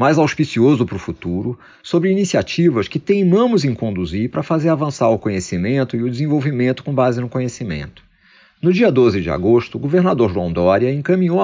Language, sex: Portuguese, male